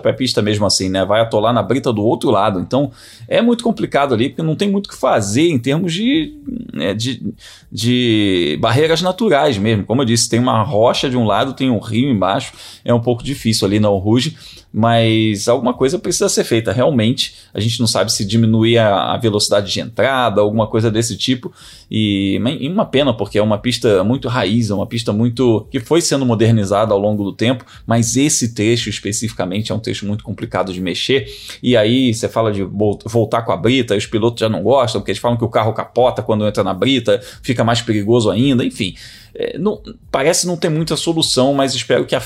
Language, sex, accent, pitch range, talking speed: Portuguese, male, Brazilian, 105-130 Hz, 215 wpm